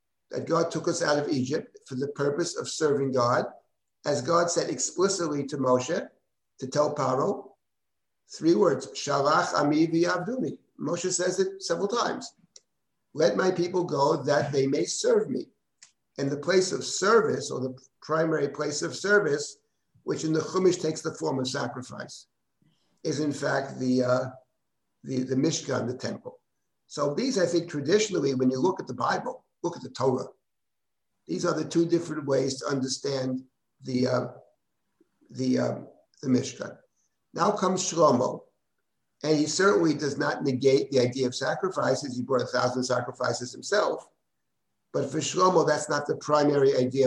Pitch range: 130-170 Hz